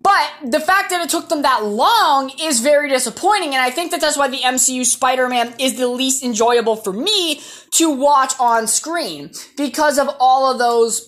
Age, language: 20-39, English